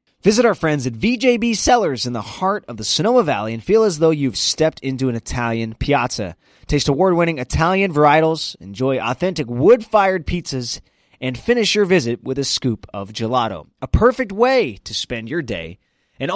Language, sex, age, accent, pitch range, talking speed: English, male, 20-39, American, 125-175 Hz, 175 wpm